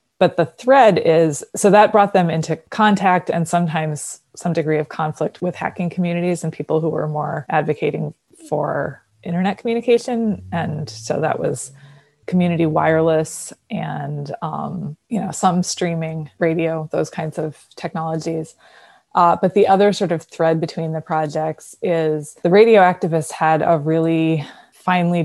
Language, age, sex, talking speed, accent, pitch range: English, 20-39, female, 150 wpm, American, 155-175 Hz